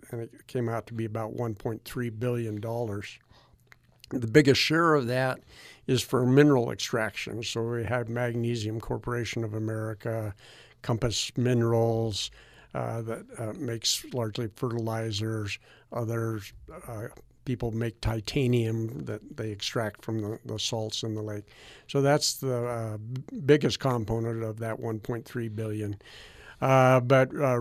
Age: 60-79